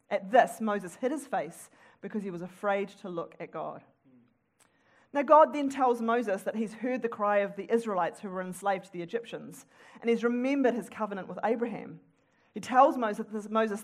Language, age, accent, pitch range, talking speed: English, 40-59, Australian, 190-255 Hz, 185 wpm